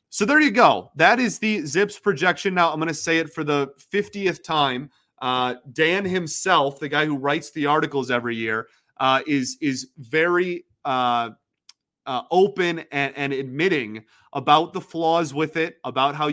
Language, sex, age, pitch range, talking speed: English, male, 30-49, 130-165 Hz, 175 wpm